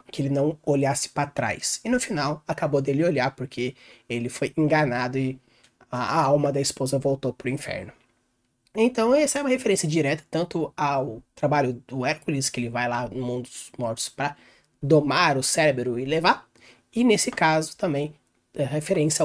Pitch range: 135-190 Hz